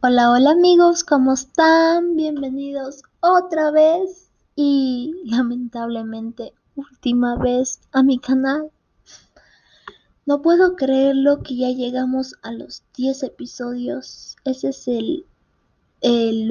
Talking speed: 105 wpm